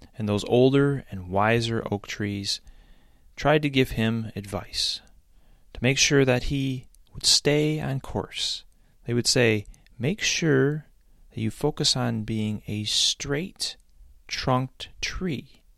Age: 30-49